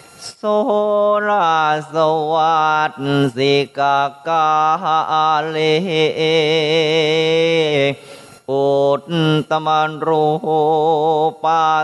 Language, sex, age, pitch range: Thai, male, 30-49, 150-160 Hz